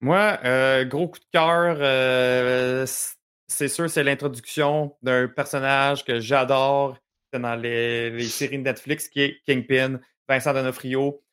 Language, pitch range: French, 125-160 Hz